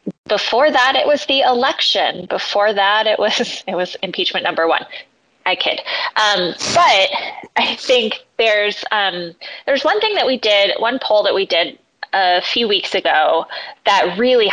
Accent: American